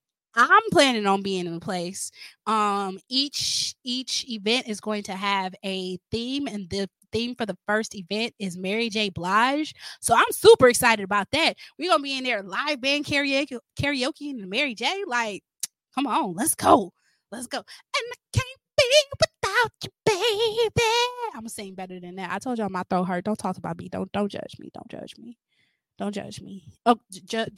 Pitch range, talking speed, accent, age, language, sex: 185-255 Hz, 190 wpm, American, 20-39, English, female